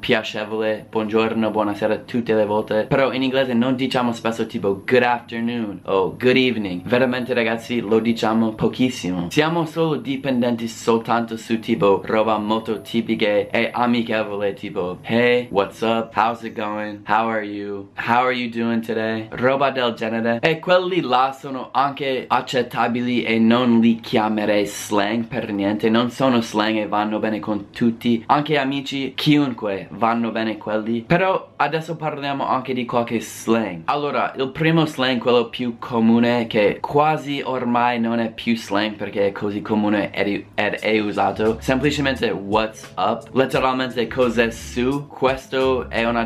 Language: Italian